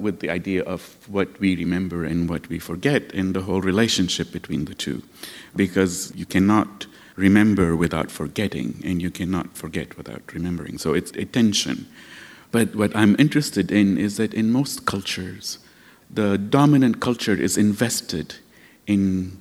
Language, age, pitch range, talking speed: English, 50-69, 95-125 Hz, 155 wpm